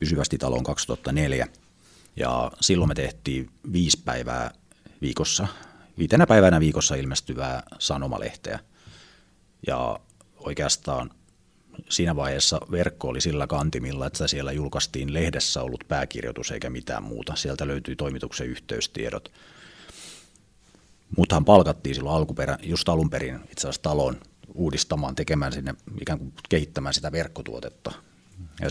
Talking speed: 105 wpm